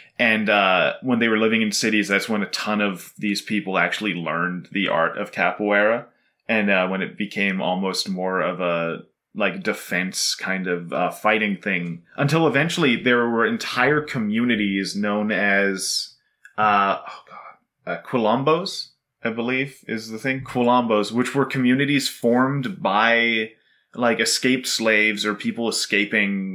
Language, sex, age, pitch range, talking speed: English, male, 30-49, 100-130 Hz, 150 wpm